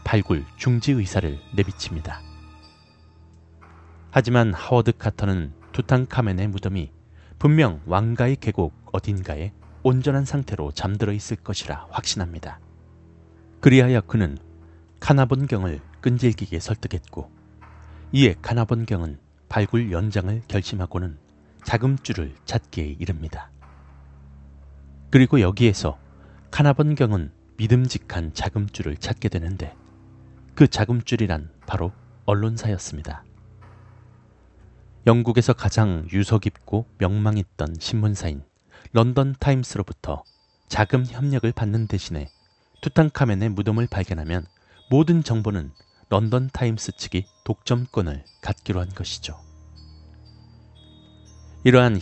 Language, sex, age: Korean, male, 30-49